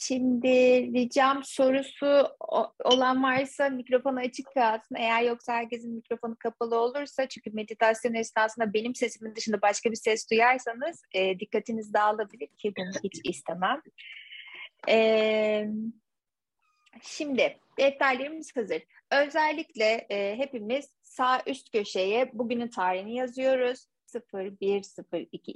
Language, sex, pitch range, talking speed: Turkish, female, 205-260 Hz, 105 wpm